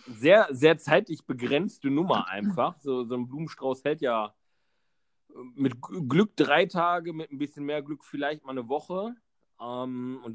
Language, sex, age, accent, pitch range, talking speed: German, male, 40-59, German, 115-145 Hz, 155 wpm